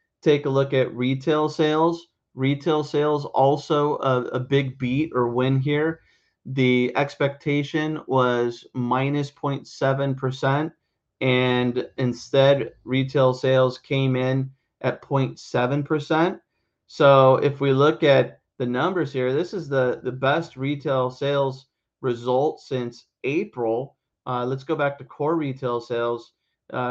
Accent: American